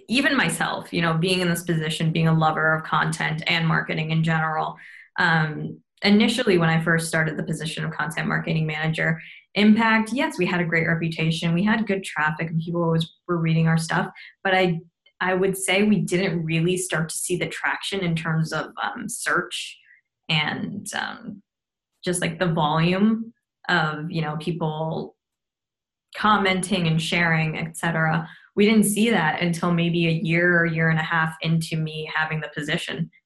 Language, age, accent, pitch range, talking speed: English, 10-29, American, 160-185 Hz, 175 wpm